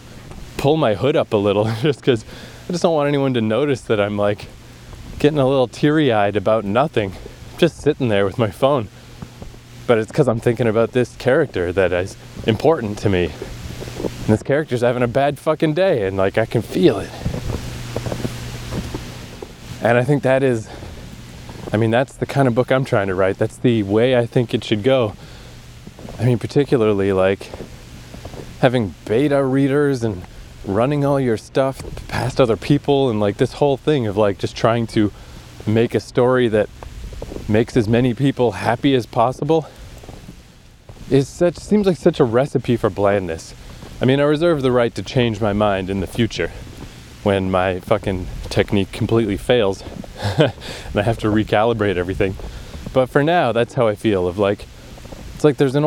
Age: 20-39